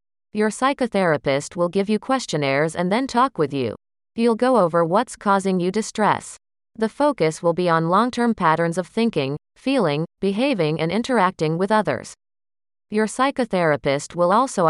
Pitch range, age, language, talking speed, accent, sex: 155-225 Hz, 30-49, English, 150 wpm, American, female